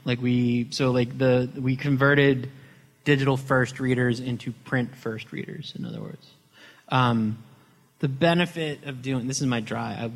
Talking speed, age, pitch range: 160 wpm, 30-49, 115-135 Hz